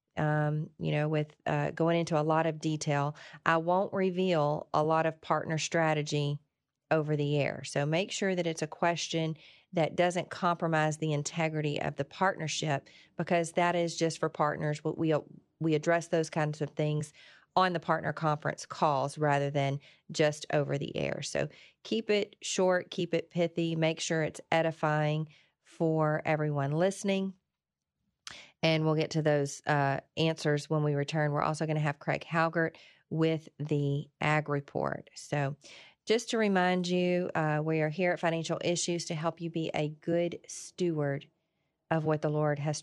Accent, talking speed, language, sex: American, 170 wpm, English, female